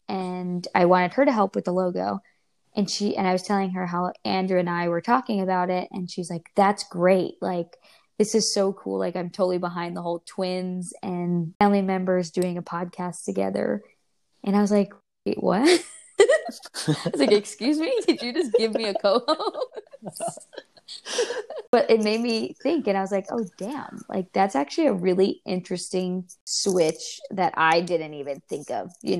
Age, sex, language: 20-39, female, English